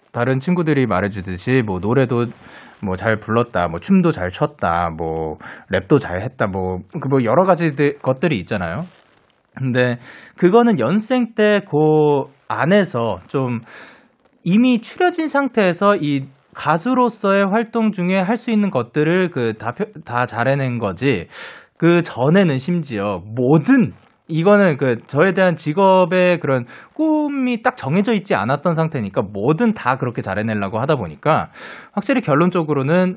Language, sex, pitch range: Korean, male, 120-195 Hz